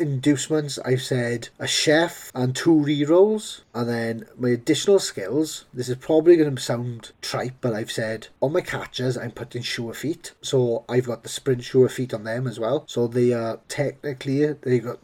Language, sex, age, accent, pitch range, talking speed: English, male, 40-59, British, 120-150 Hz, 190 wpm